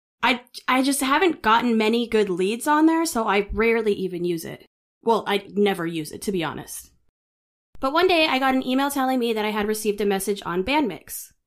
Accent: American